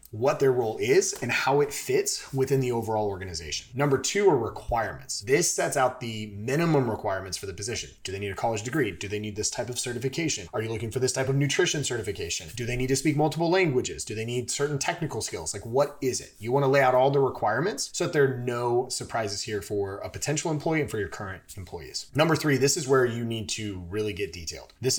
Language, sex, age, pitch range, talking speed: English, male, 30-49, 105-135 Hz, 240 wpm